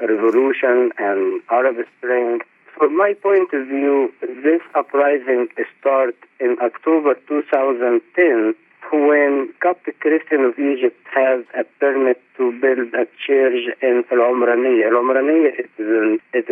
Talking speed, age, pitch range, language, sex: 115 wpm, 50-69, 120-155 Hz, English, male